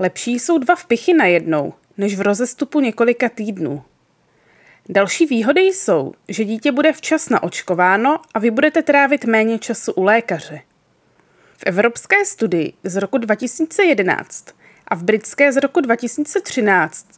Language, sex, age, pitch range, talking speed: Czech, female, 20-39, 200-280 Hz, 135 wpm